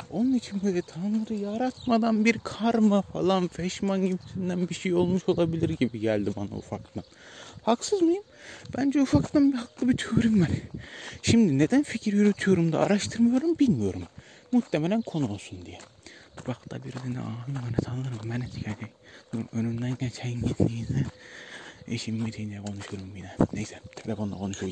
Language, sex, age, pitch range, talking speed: Turkish, male, 30-49, 110-175 Hz, 135 wpm